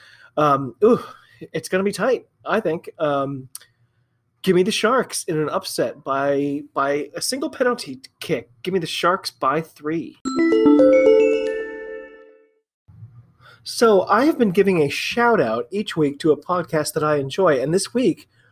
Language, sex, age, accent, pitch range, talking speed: English, male, 30-49, American, 145-195 Hz, 150 wpm